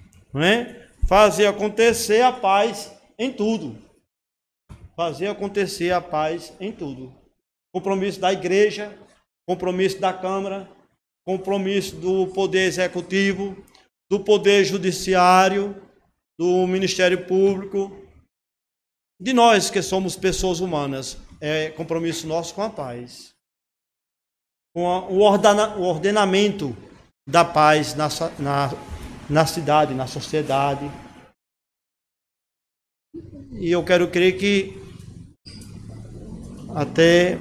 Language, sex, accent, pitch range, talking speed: Portuguese, male, Brazilian, 150-195 Hz, 100 wpm